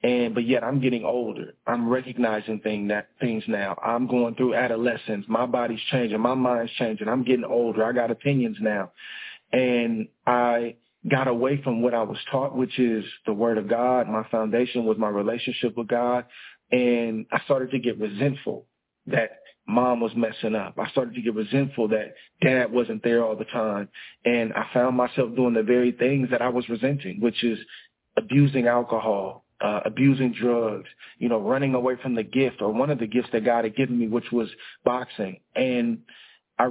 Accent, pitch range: American, 115-130 Hz